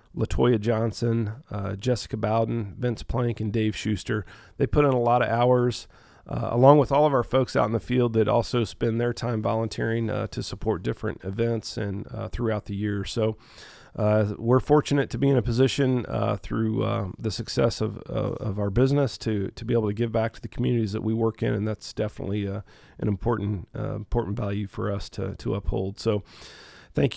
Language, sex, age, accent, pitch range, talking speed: English, male, 40-59, American, 105-125 Hz, 205 wpm